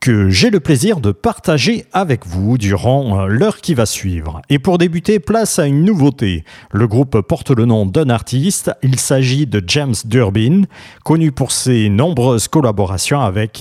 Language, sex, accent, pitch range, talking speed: French, male, French, 110-165 Hz, 170 wpm